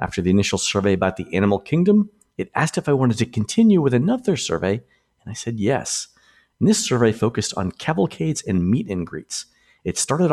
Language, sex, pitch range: English, male, 90-125 Hz